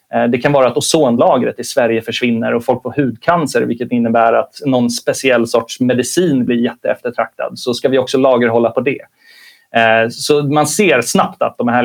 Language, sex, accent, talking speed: Swedish, male, native, 180 wpm